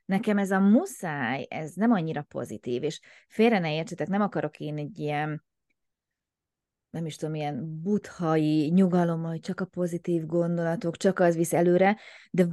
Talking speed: 160 wpm